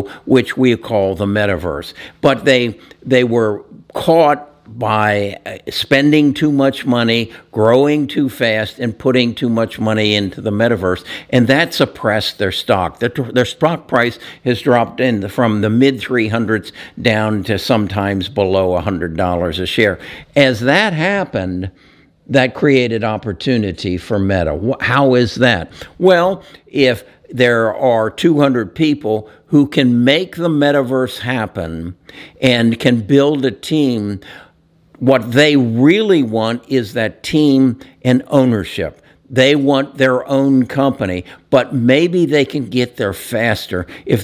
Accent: American